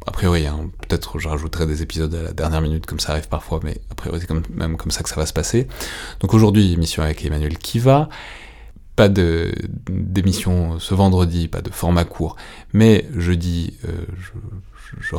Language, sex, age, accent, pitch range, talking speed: French, male, 30-49, French, 80-95 Hz, 200 wpm